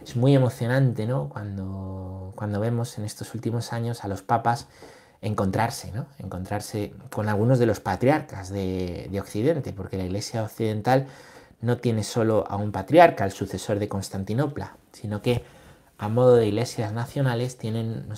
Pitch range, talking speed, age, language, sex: 100-120 Hz, 160 wpm, 30-49, Spanish, male